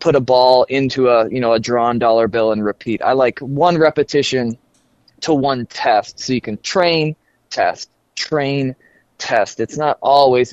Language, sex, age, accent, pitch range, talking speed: English, male, 20-39, American, 120-160 Hz, 170 wpm